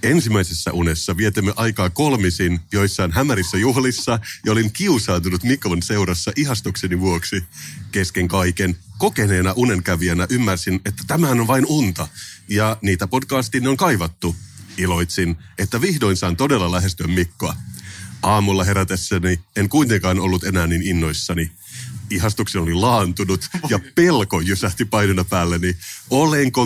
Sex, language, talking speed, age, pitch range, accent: male, Finnish, 120 wpm, 30-49, 90-110 Hz, native